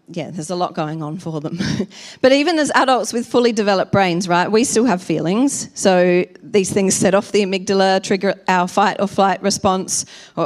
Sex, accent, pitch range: female, Australian, 180-225 Hz